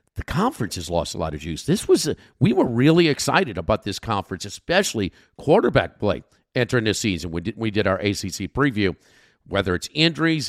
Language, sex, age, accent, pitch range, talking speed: English, male, 50-69, American, 100-155 Hz, 195 wpm